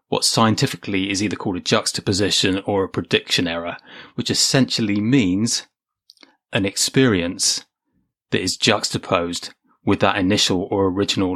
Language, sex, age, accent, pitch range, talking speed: English, male, 30-49, British, 95-115 Hz, 125 wpm